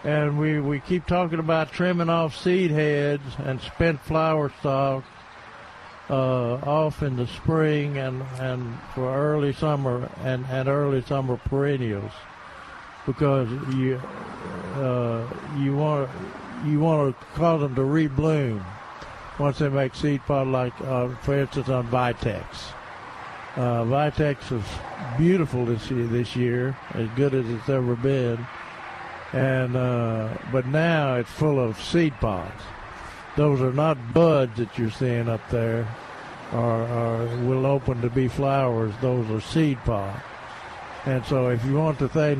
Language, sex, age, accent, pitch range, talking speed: English, male, 60-79, American, 120-145 Hz, 145 wpm